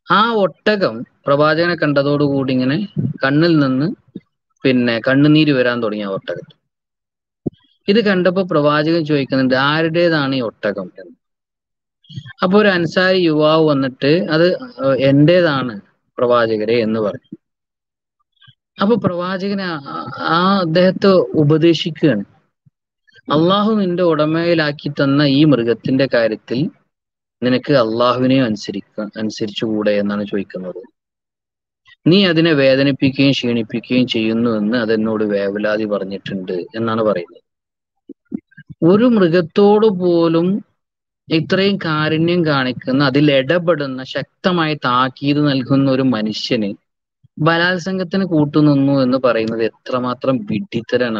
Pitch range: 125-175 Hz